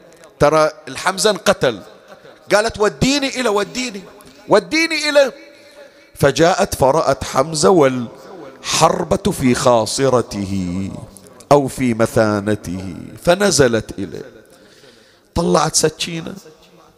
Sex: male